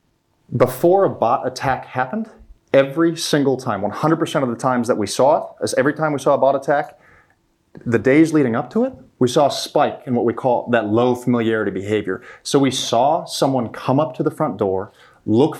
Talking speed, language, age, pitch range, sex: 195 wpm, English, 30-49, 110-145 Hz, male